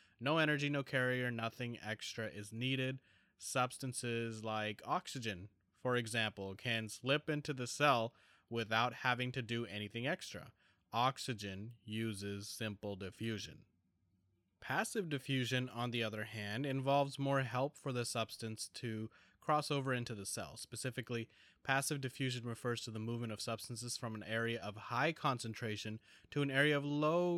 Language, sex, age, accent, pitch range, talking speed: English, male, 20-39, American, 105-130 Hz, 145 wpm